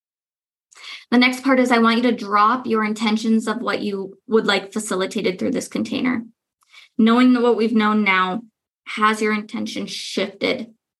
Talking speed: 165 wpm